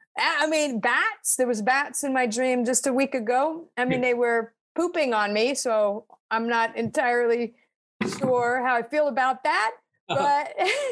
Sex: female